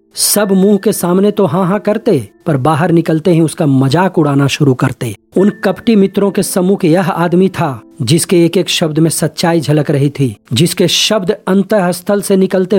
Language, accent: Hindi, native